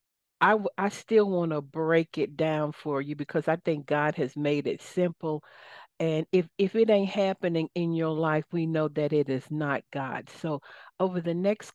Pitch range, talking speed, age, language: 145-165 Hz, 200 wpm, 60-79, English